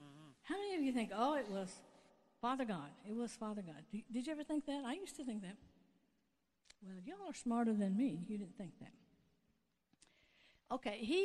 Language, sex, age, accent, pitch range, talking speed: English, female, 60-79, American, 200-275 Hz, 195 wpm